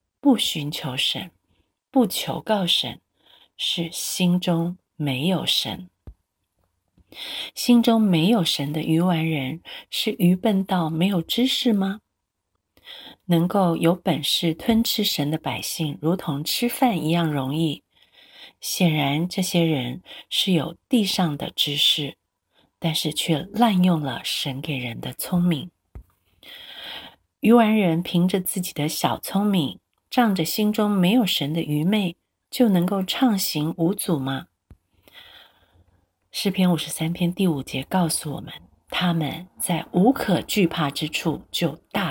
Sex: female